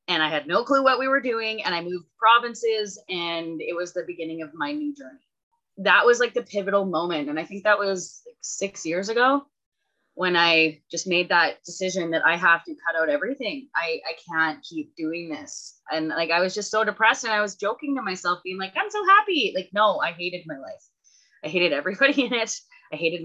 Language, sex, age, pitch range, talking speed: English, female, 20-39, 175-255 Hz, 220 wpm